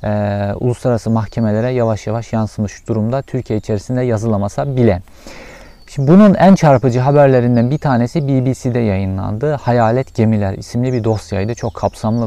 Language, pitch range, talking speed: Turkish, 105-130 Hz, 125 wpm